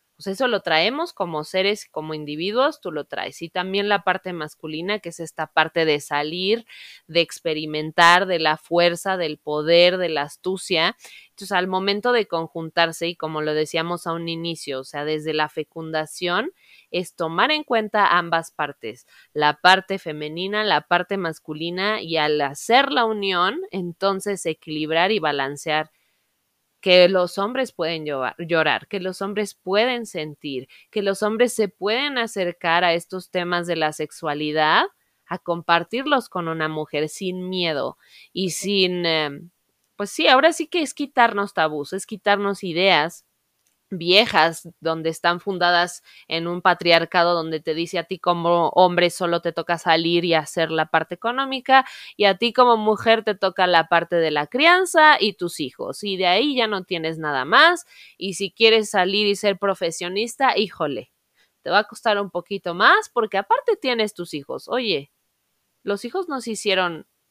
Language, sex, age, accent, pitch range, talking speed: Spanish, female, 20-39, Mexican, 160-205 Hz, 165 wpm